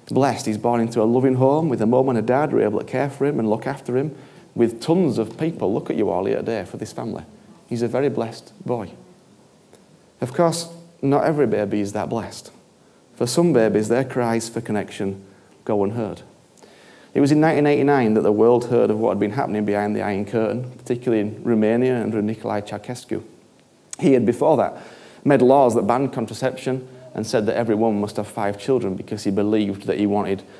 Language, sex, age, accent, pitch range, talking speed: English, male, 30-49, British, 105-130 Hz, 205 wpm